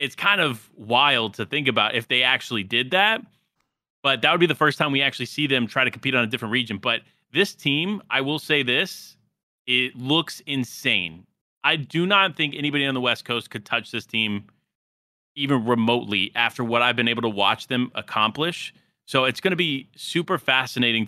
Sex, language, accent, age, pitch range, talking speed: male, English, American, 30-49, 120-145 Hz, 200 wpm